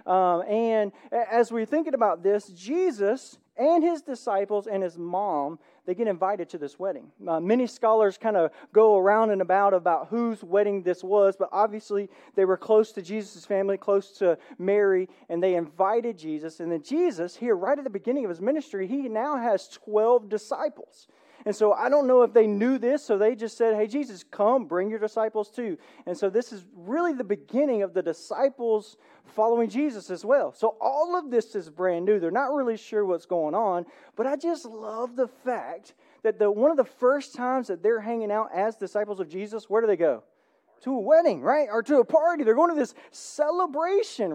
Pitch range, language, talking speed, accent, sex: 185-250 Hz, English, 205 wpm, American, male